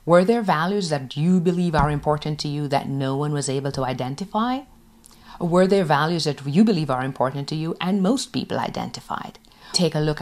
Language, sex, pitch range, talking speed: English, female, 140-190 Hz, 200 wpm